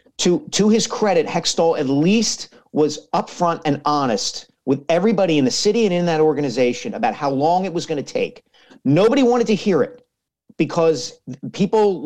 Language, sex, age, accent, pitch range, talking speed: English, male, 40-59, American, 150-200 Hz, 175 wpm